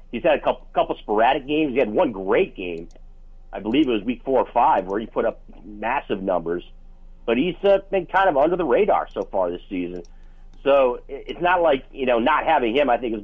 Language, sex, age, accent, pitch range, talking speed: English, male, 40-59, American, 105-130 Hz, 230 wpm